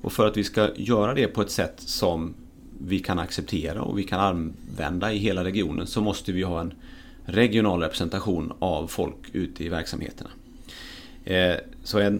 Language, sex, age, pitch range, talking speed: English, male, 30-49, 90-105 Hz, 170 wpm